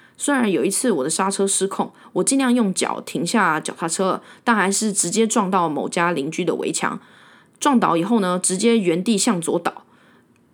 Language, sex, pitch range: Chinese, female, 175-240 Hz